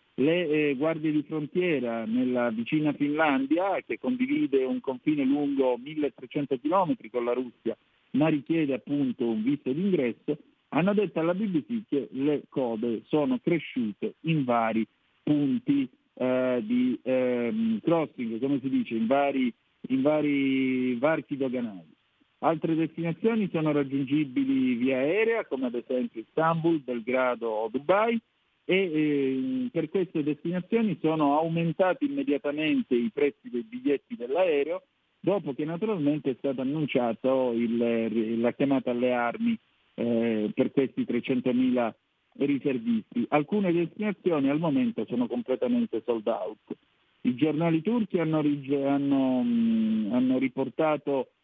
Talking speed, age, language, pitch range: 120 wpm, 50-69, Italian, 130-190 Hz